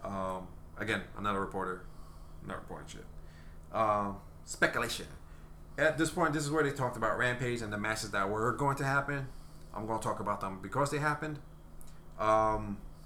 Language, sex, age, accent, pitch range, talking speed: English, male, 30-49, American, 80-130 Hz, 185 wpm